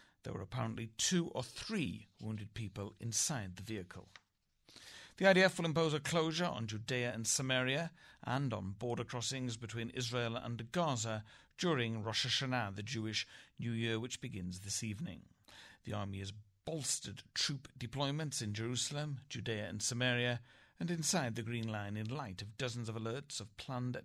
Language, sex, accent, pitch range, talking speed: English, male, British, 105-135 Hz, 160 wpm